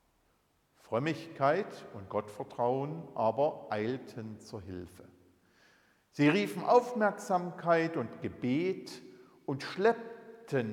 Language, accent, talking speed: German, German, 80 wpm